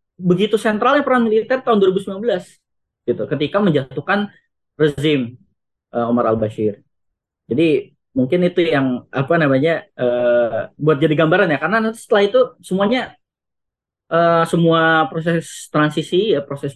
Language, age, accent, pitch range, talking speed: Indonesian, 10-29, native, 140-195 Hz, 125 wpm